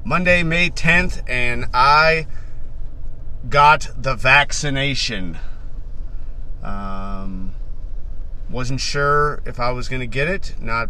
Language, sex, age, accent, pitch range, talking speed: English, male, 30-49, American, 110-140 Hz, 105 wpm